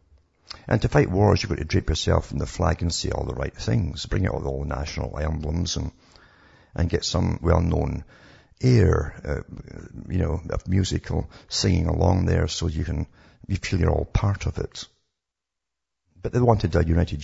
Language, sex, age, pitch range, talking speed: English, male, 50-69, 80-95 Hz, 185 wpm